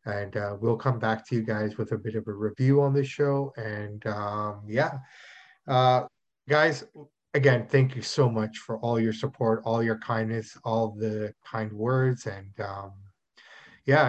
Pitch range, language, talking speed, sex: 110-140 Hz, English, 175 wpm, male